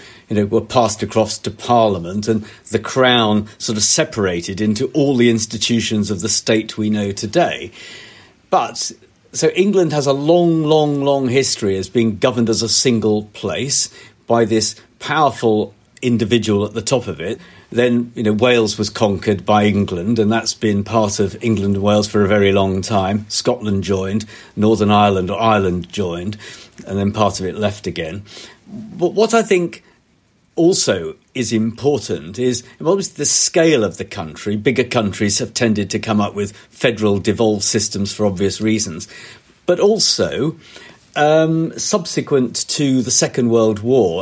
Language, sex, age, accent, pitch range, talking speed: English, male, 50-69, British, 105-125 Hz, 160 wpm